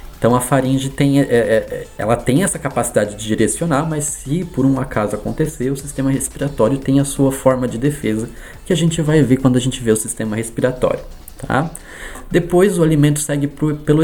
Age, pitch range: 20-39, 125-150 Hz